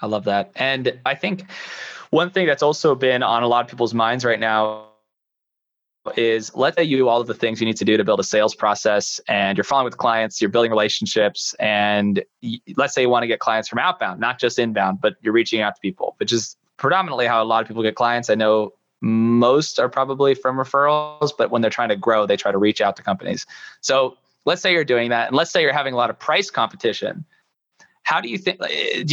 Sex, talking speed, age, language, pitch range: male, 235 wpm, 20-39, English, 115-140 Hz